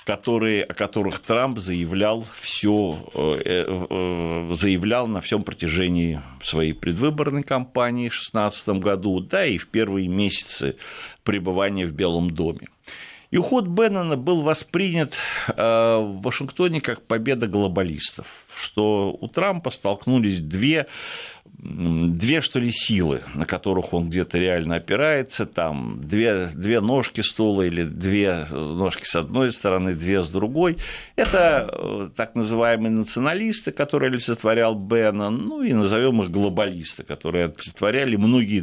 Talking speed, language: 120 wpm, Russian